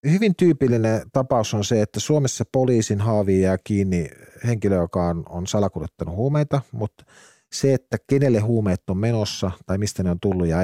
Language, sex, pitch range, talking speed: Finnish, male, 95-120 Hz, 170 wpm